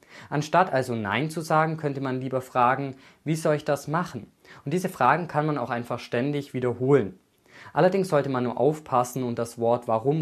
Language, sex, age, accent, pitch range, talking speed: German, male, 20-39, German, 110-135 Hz, 190 wpm